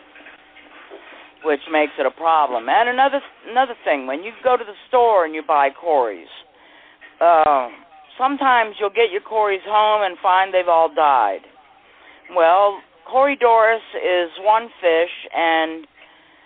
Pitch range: 160-225 Hz